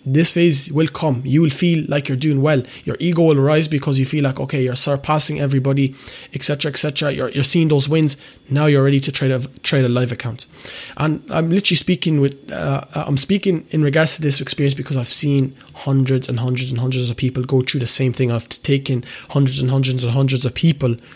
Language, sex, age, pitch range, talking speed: English, male, 20-39, 130-150 Hz, 225 wpm